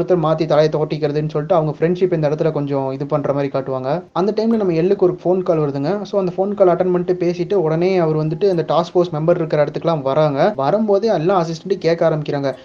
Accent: native